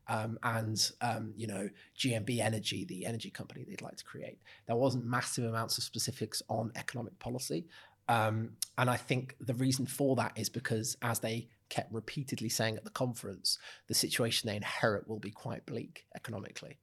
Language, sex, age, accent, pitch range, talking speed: English, male, 30-49, British, 115-130 Hz, 180 wpm